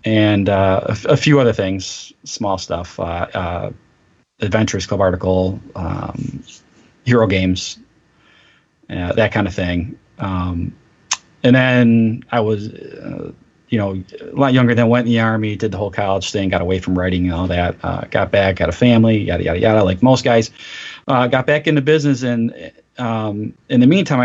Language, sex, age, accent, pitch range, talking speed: English, male, 30-49, American, 95-125 Hz, 185 wpm